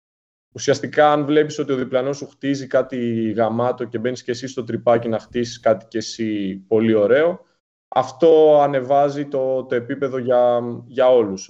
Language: Greek